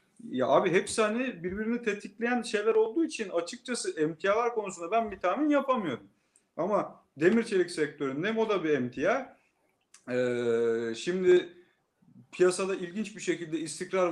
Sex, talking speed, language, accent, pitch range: male, 125 wpm, Turkish, native, 130-180 Hz